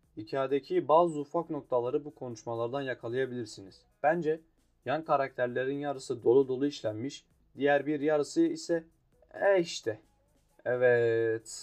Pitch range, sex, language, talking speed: 115-145 Hz, male, Turkish, 110 wpm